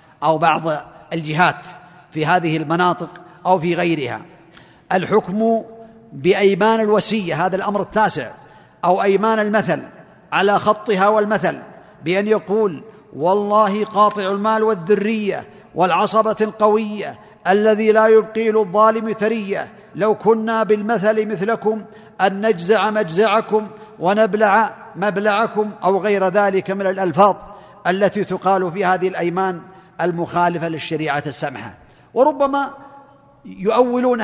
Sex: male